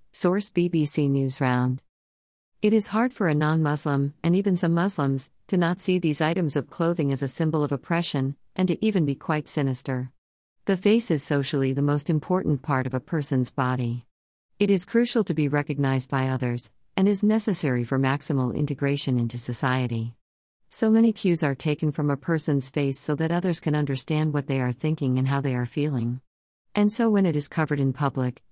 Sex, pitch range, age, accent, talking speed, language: female, 130-170 Hz, 50-69, American, 190 wpm, English